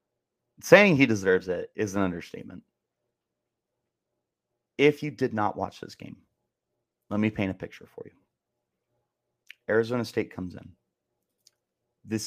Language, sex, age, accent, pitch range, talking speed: English, male, 30-49, American, 100-115 Hz, 125 wpm